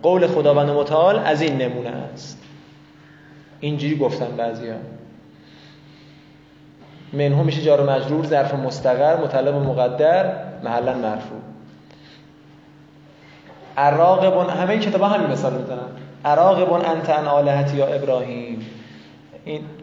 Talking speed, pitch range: 95 wpm, 130-160 Hz